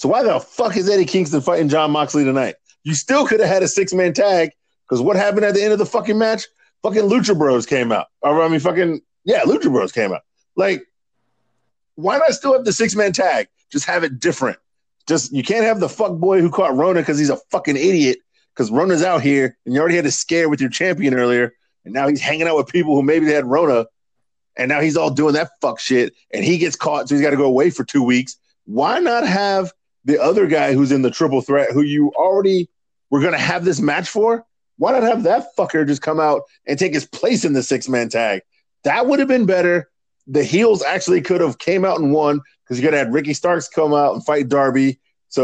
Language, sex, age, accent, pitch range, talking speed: English, male, 30-49, American, 135-185 Hz, 235 wpm